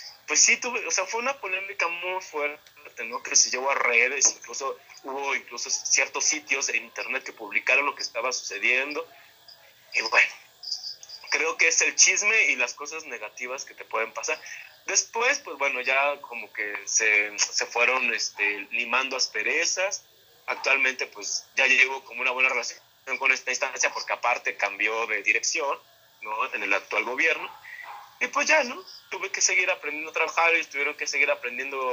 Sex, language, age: male, Spanish, 30-49